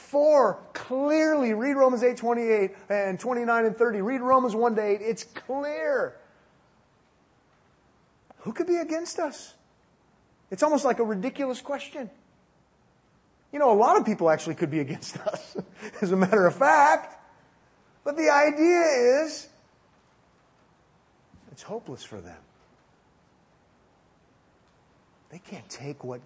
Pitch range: 185-270 Hz